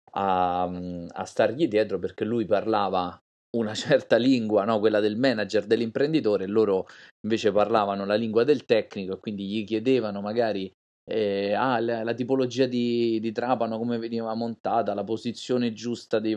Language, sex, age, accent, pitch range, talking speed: Italian, male, 30-49, native, 100-135 Hz, 145 wpm